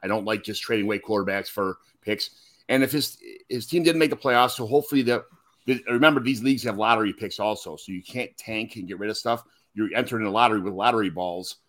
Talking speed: 230 wpm